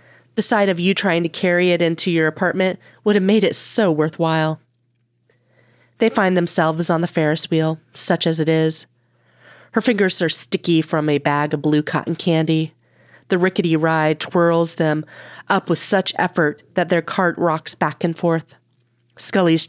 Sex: female